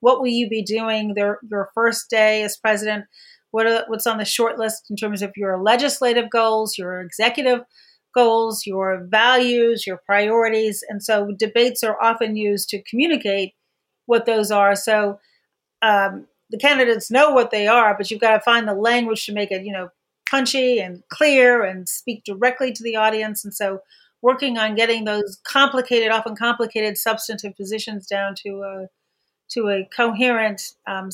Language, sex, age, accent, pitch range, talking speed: English, female, 40-59, American, 205-240 Hz, 175 wpm